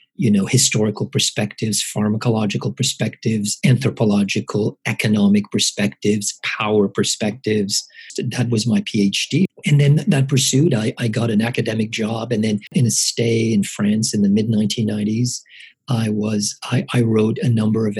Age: 40-59